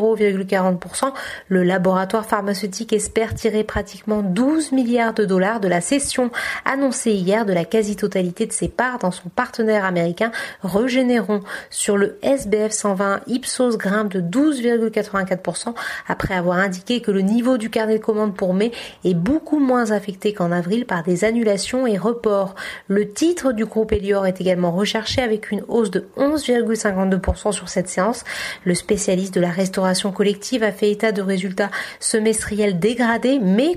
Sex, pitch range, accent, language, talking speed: female, 195-235 Hz, French, French, 155 wpm